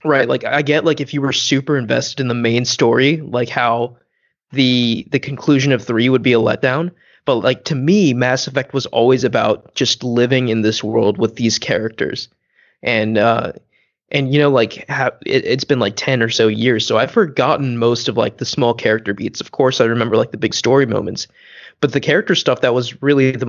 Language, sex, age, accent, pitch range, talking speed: English, male, 20-39, American, 115-140 Hz, 215 wpm